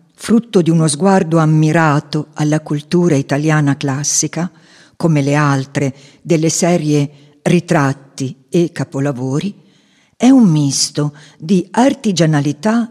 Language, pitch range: Italian, 145-195 Hz